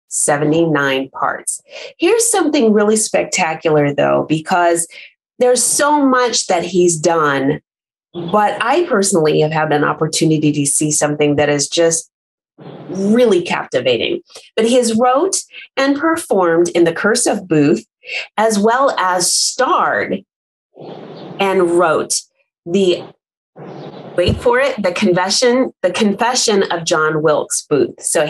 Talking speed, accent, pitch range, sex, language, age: 125 wpm, American, 165-240 Hz, female, English, 30-49